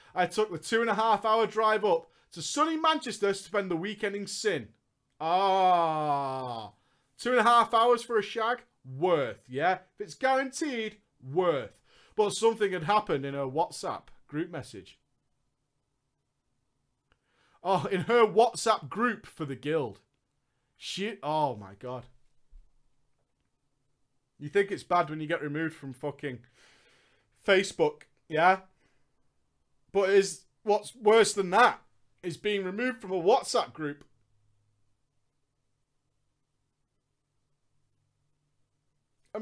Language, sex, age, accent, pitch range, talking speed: English, male, 30-49, British, 135-225 Hz, 125 wpm